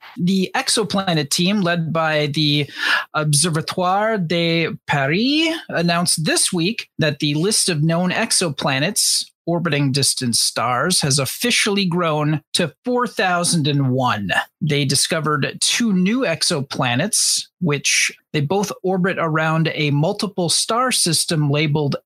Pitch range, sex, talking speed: 150-200 Hz, male, 110 wpm